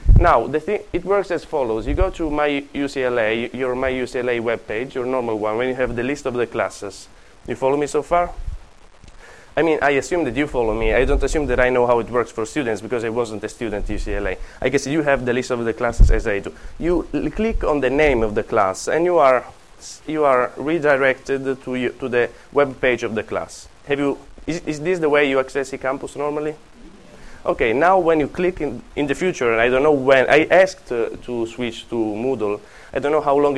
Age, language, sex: 20-39, English, male